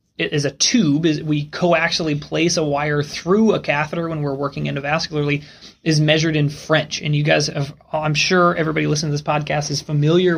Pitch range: 145-170 Hz